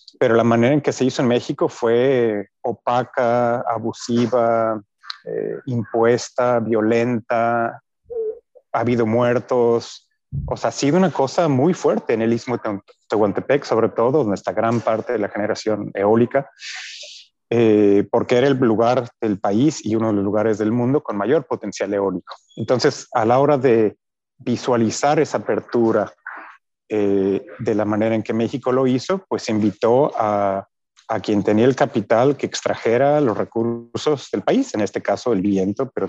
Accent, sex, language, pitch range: Mexican, male, Spanish, 110-130 Hz